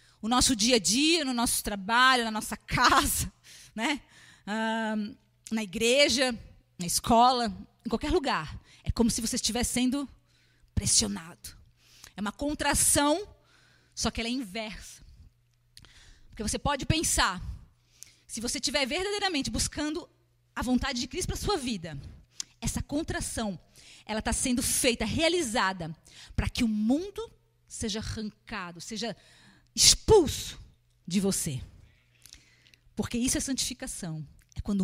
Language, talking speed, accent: Portuguese, 125 wpm, Brazilian